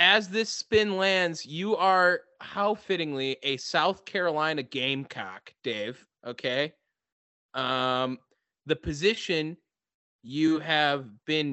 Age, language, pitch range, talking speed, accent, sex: 20-39, English, 130-215 Hz, 105 wpm, American, male